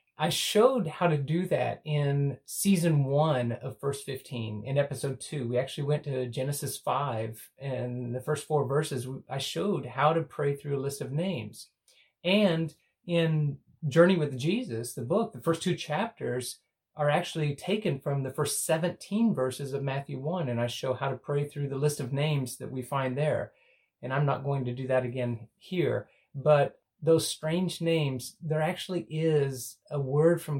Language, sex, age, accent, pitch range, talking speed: English, male, 30-49, American, 125-155 Hz, 180 wpm